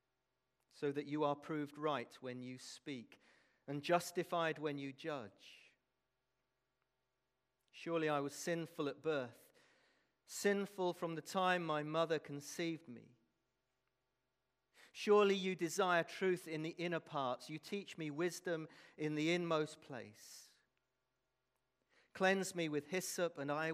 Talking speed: 125 wpm